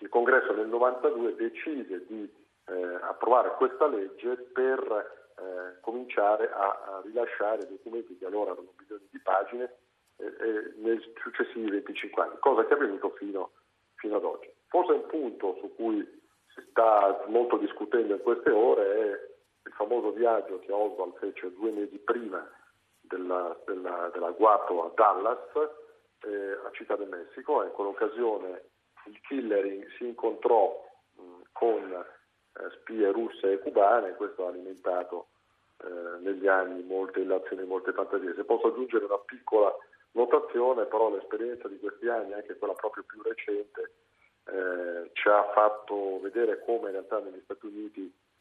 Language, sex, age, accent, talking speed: Italian, male, 50-69, native, 150 wpm